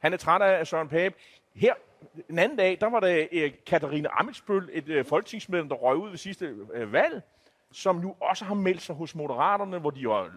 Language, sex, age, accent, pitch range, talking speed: Danish, male, 30-49, native, 145-190 Hz, 215 wpm